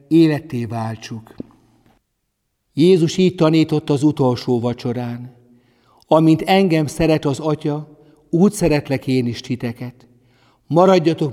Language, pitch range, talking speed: Hungarian, 125-155 Hz, 100 wpm